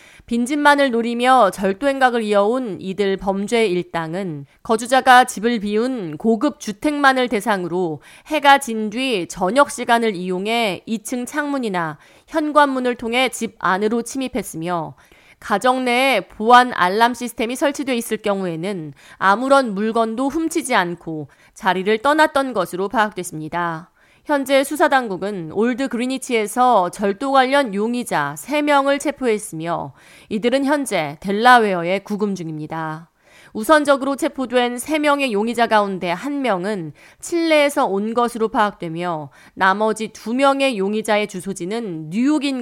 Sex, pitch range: female, 185-260 Hz